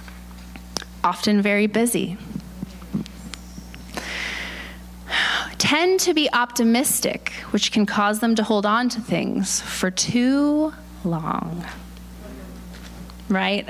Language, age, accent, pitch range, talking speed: English, 20-39, American, 180-235 Hz, 90 wpm